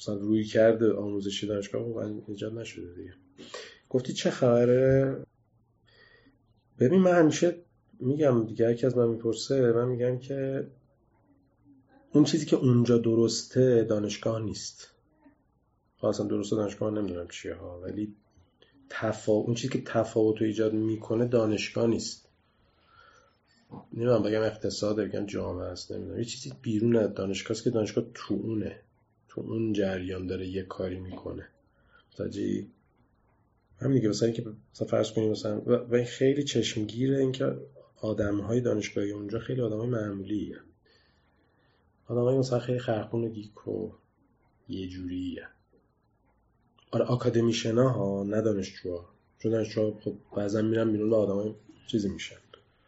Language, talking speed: Persian, 130 wpm